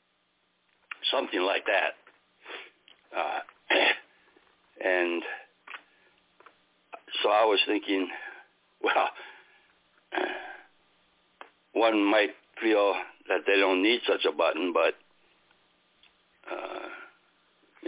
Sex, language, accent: male, English, American